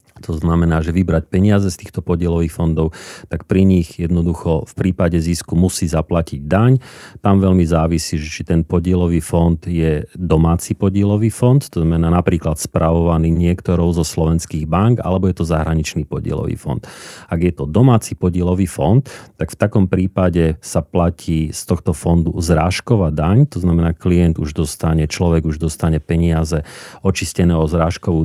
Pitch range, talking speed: 80-95 Hz, 155 wpm